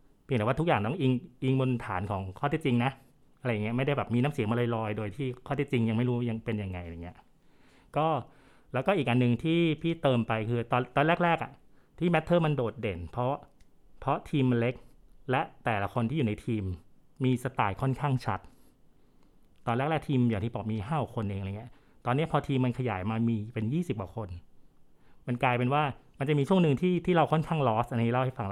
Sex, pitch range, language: male, 110-145 Hz, Thai